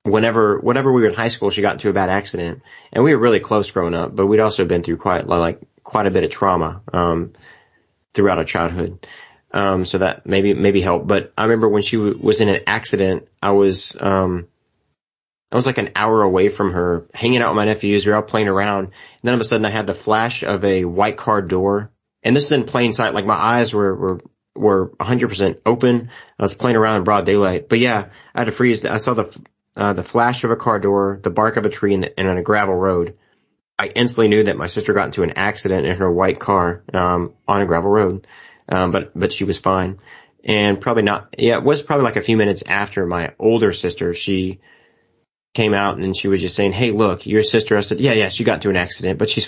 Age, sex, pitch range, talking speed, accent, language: 30-49, male, 90-110 Hz, 240 wpm, American, English